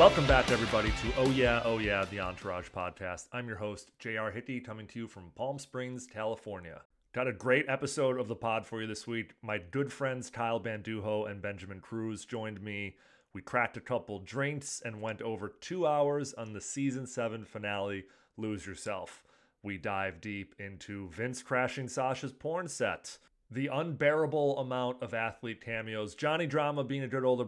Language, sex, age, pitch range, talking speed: English, male, 30-49, 105-130 Hz, 180 wpm